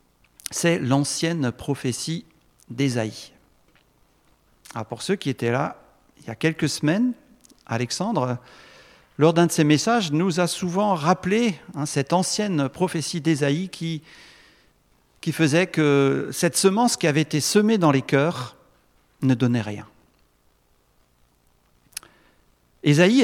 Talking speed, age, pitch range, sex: 120 wpm, 50-69, 130-180 Hz, male